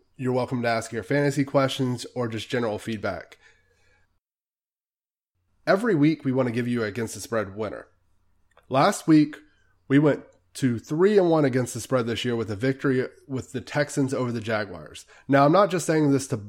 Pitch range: 120-145 Hz